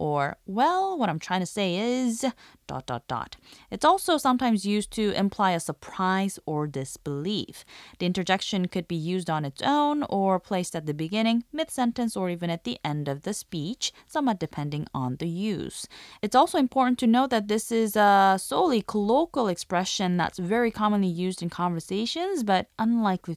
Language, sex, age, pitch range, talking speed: English, female, 20-39, 165-240 Hz, 165 wpm